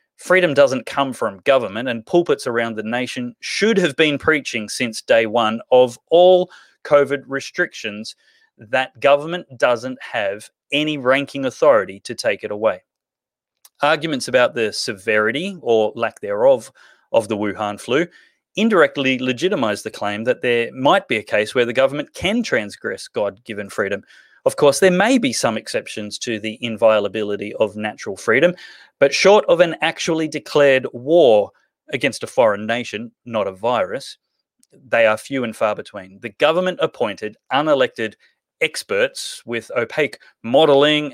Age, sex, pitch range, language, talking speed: 30-49, male, 115-180 Hz, English, 145 wpm